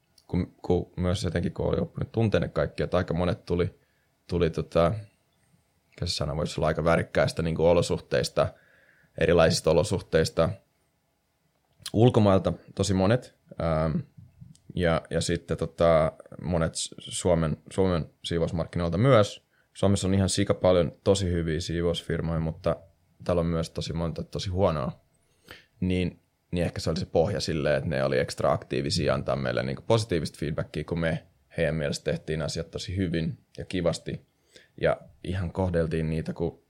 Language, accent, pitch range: Finnish, native, 80-95 Hz